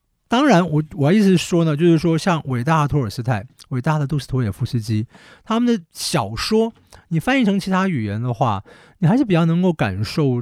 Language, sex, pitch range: Chinese, male, 120-165 Hz